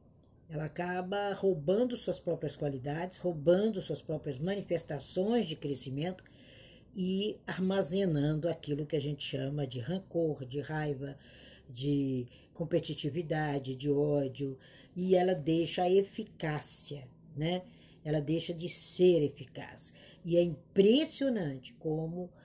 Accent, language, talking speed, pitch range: Brazilian, Portuguese, 110 wpm, 145-195 Hz